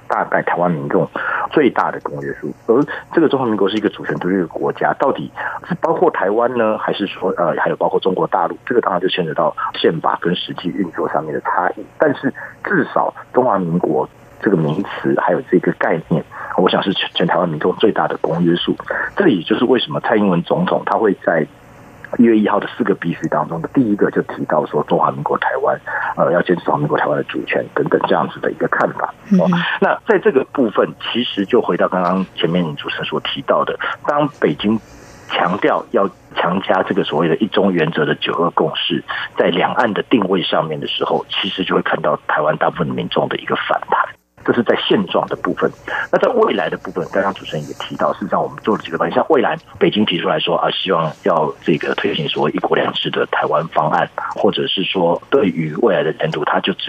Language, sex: Chinese, male